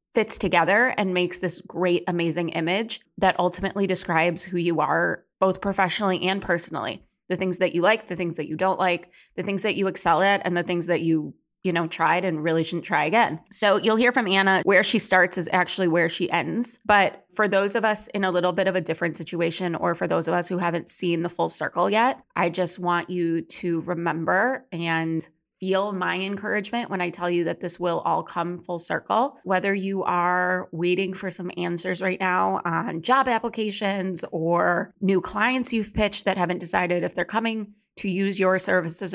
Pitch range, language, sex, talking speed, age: 175-200 Hz, English, female, 205 wpm, 20-39